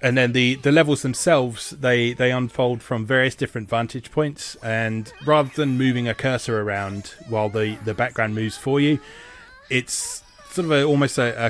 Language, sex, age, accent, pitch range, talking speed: English, male, 30-49, British, 105-130 Hz, 185 wpm